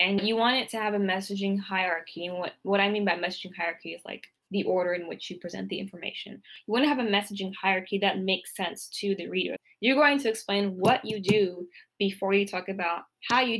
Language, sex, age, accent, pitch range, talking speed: English, female, 10-29, American, 180-210 Hz, 235 wpm